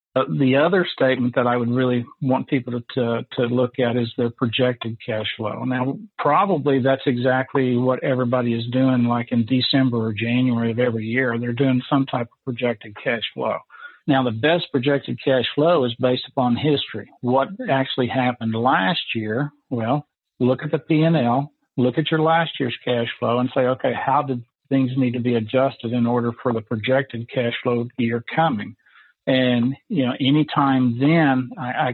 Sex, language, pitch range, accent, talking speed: male, English, 120-135 Hz, American, 180 wpm